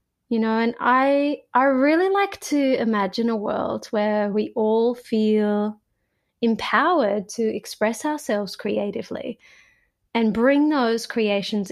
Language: English